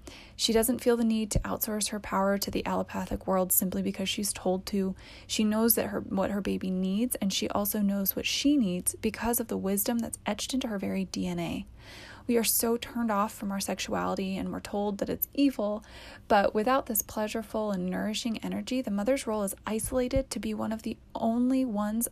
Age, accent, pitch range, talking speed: 20-39, American, 190-230 Hz, 205 wpm